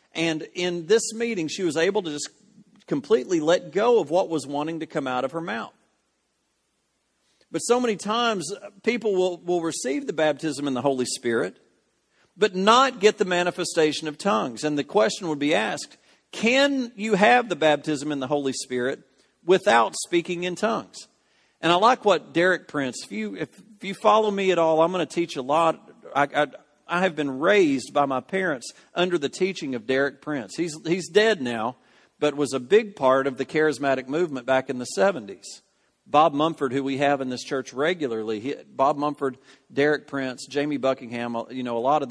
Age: 50-69